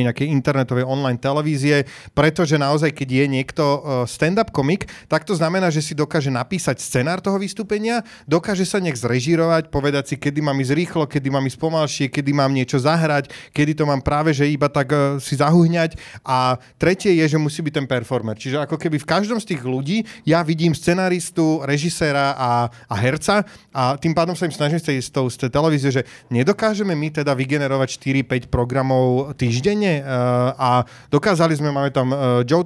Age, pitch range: 30-49, 135-160 Hz